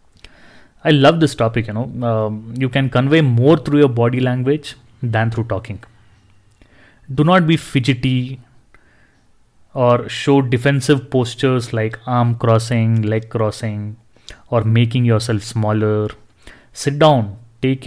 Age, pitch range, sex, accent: 30-49, 110-135 Hz, male, Indian